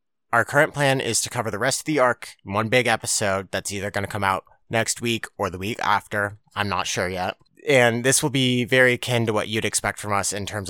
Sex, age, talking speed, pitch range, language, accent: male, 30-49, 250 wpm, 100-130 Hz, English, American